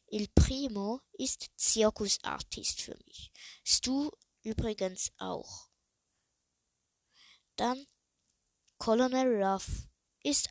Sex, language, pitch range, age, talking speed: female, German, 190-250 Hz, 20-39, 75 wpm